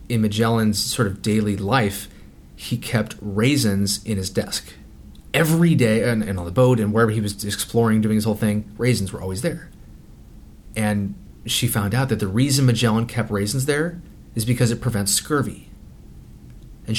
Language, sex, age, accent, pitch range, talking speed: English, male, 30-49, American, 105-130 Hz, 175 wpm